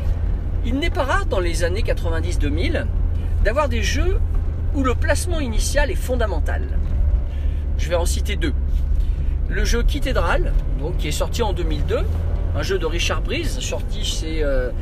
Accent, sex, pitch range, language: French, male, 70-90 Hz, French